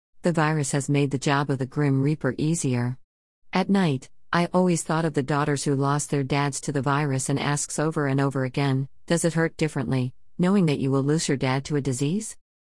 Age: 50-69